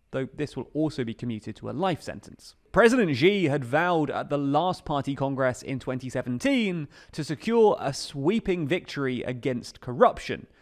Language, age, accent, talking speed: English, 30-49, British, 160 wpm